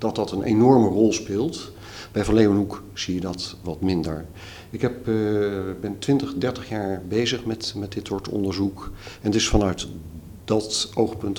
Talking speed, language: 170 wpm, Dutch